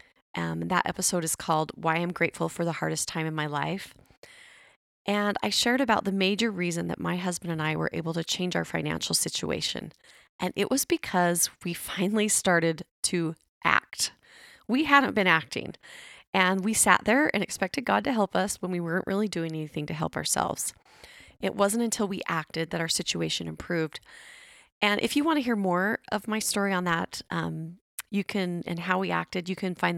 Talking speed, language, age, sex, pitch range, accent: 195 wpm, English, 30-49, female, 165-205 Hz, American